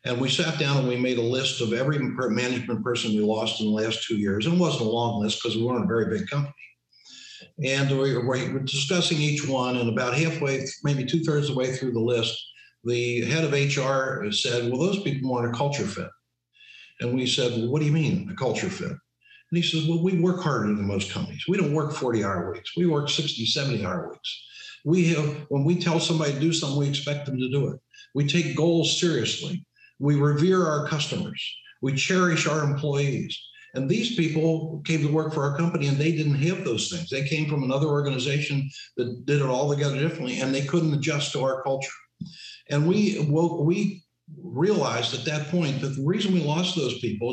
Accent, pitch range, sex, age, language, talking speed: American, 130-165 Hz, male, 60-79, English, 215 wpm